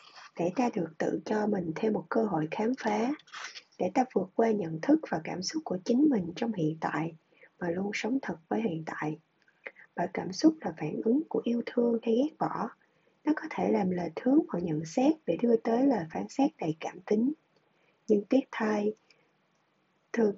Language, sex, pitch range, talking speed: Vietnamese, female, 180-250 Hz, 200 wpm